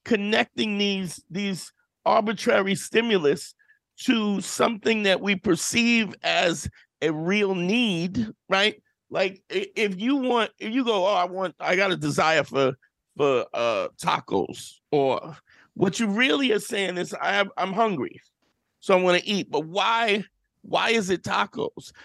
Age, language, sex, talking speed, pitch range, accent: 50-69, English, male, 145 wpm, 180-220 Hz, American